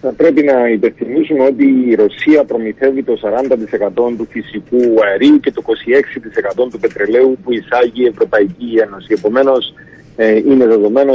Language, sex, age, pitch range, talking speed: Greek, male, 40-59, 115-140 Hz, 145 wpm